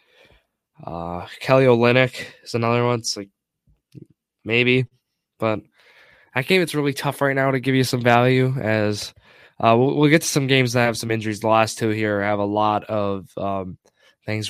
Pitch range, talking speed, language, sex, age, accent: 110-130 Hz, 185 wpm, English, male, 20-39, American